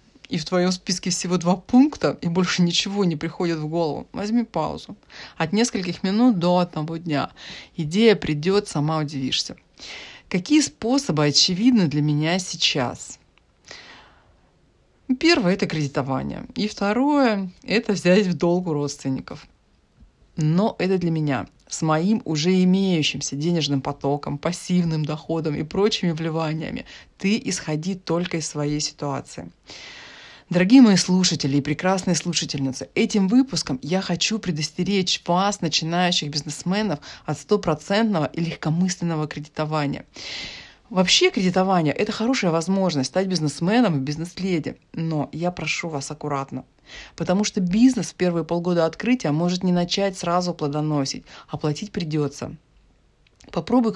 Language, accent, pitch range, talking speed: Russian, native, 155-195 Hz, 130 wpm